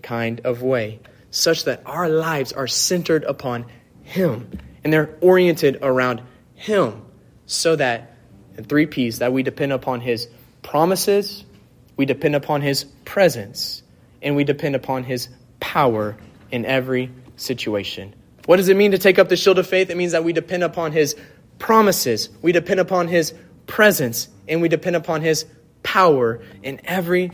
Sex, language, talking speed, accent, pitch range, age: male, English, 160 wpm, American, 120-165 Hz, 30-49